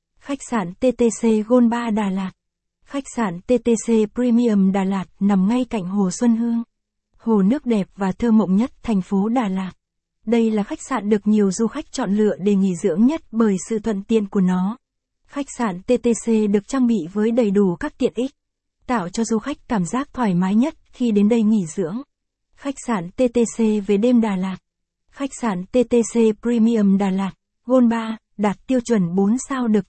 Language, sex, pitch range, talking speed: Vietnamese, female, 200-245 Hz, 195 wpm